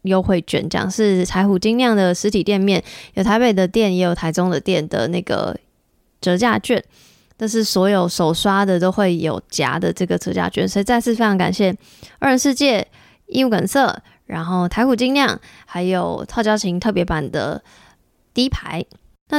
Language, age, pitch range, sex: Chinese, 20-39, 180-235 Hz, female